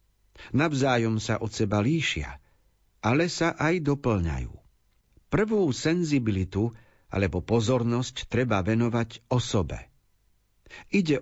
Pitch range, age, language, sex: 100-130 Hz, 50-69, Slovak, male